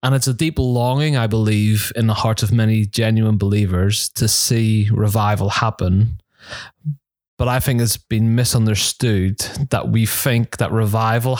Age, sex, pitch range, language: 20-39, male, 105-120 Hz, English